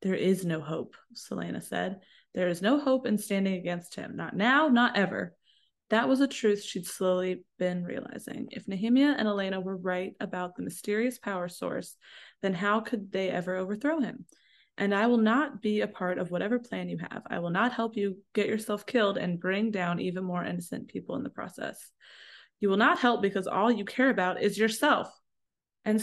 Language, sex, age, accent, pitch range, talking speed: English, female, 20-39, American, 185-230 Hz, 200 wpm